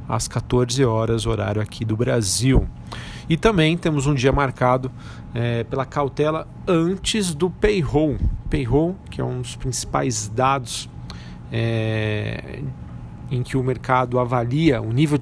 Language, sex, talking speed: Portuguese, male, 135 wpm